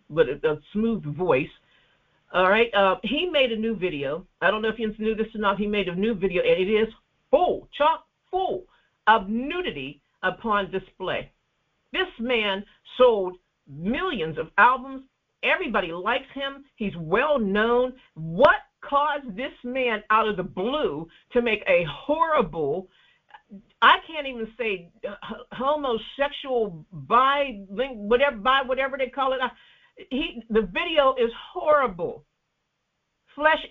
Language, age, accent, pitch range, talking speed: English, 50-69, American, 215-300 Hz, 140 wpm